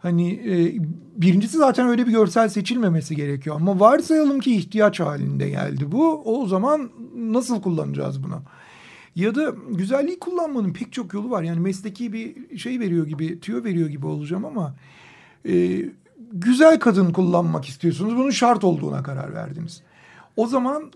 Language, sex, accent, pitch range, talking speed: Turkish, male, native, 170-240 Hz, 150 wpm